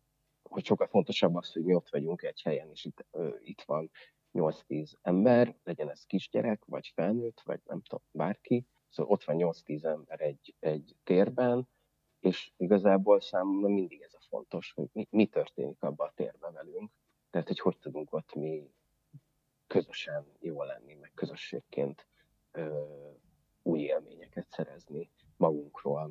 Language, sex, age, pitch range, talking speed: Hungarian, male, 30-49, 85-125 Hz, 150 wpm